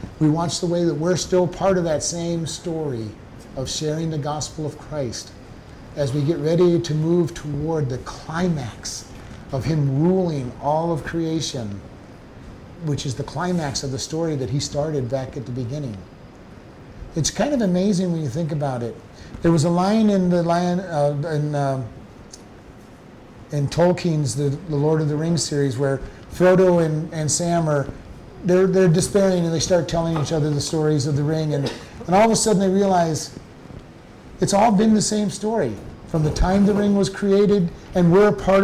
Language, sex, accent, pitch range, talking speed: English, male, American, 140-175 Hz, 185 wpm